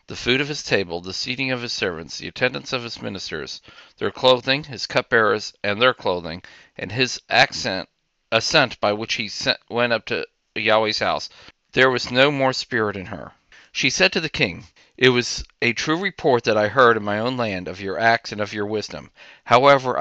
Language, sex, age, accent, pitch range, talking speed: English, male, 40-59, American, 100-125 Hz, 200 wpm